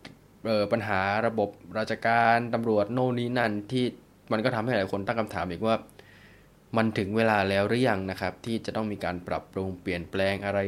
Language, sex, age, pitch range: Thai, male, 20-39, 100-125 Hz